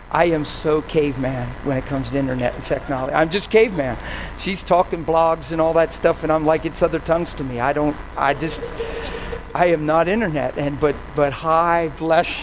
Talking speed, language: 205 wpm, English